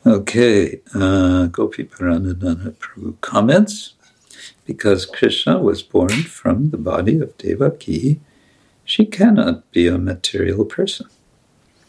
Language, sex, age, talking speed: English, male, 60-79, 105 wpm